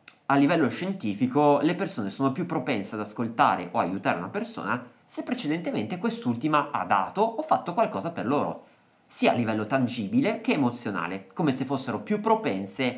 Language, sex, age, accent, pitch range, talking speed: Italian, male, 30-49, native, 120-170 Hz, 160 wpm